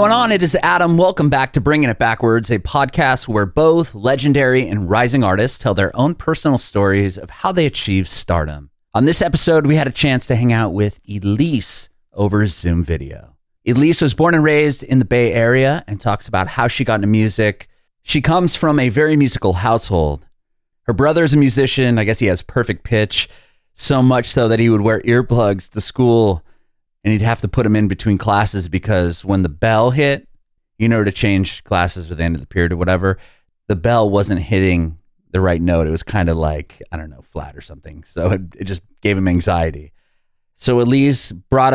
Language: English